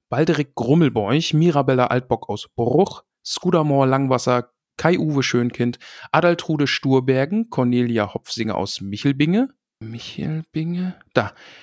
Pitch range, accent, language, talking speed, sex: 125-170 Hz, German, German, 95 wpm, male